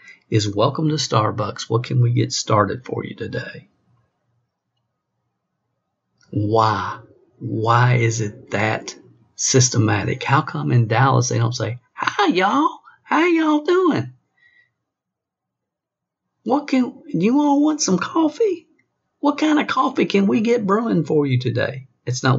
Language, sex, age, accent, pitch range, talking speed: English, male, 50-69, American, 120-155 Hz, 135 wpm